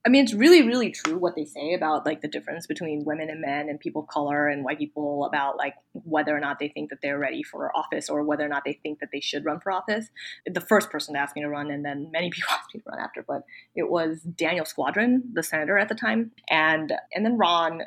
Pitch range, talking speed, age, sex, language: 150-185 Hz, 265 wpm, 20-39, female, English